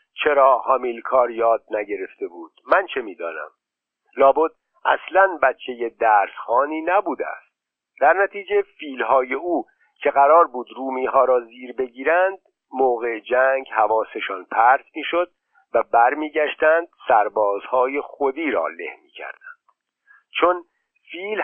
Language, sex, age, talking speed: Persian, male, 50-69, 120 wpm